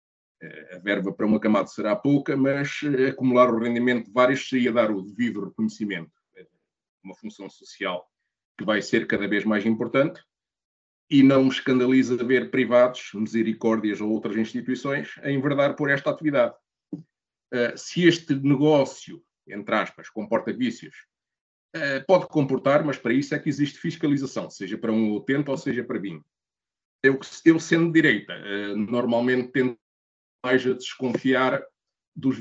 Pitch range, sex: 110-135 Hz, male